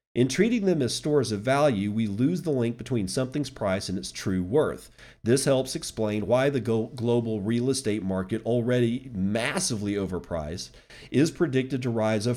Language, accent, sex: English, American, male